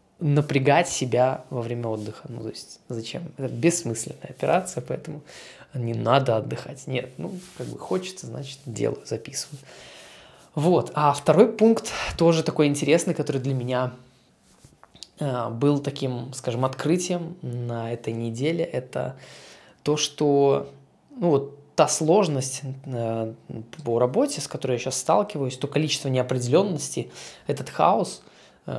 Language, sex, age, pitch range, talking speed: Russian, male, 20-39, 120-150 Hz, 125 wpm